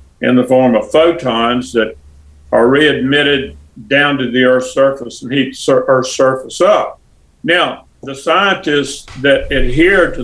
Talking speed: 145 wpm